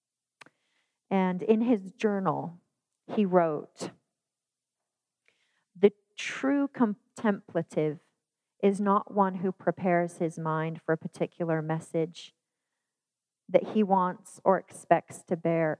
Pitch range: 170-205 Hz